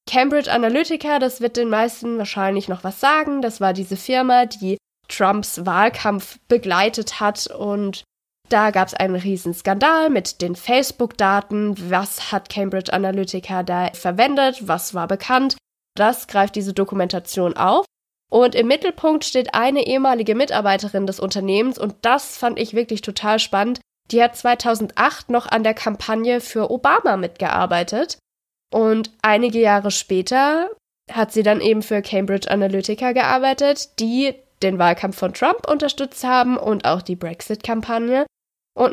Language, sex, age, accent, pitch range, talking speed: German, female, 20-39, German, 195-250 Hz, 145 wpm